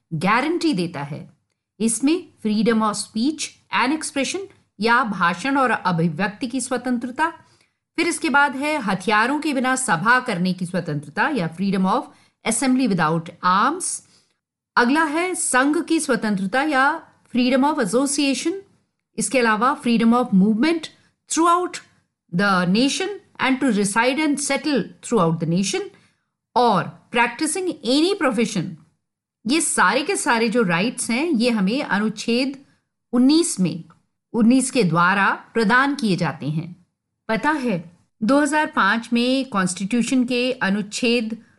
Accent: native